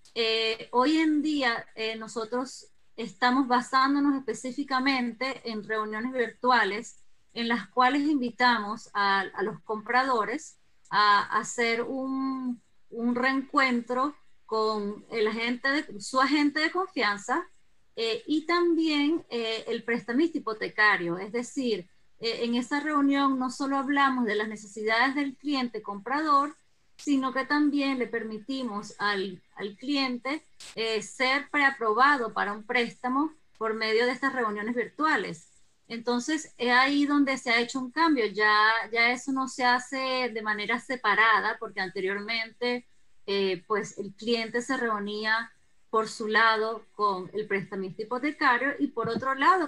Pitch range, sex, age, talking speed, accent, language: 220-270 Hz, female, 20-39, 135 wpm, American, Spanish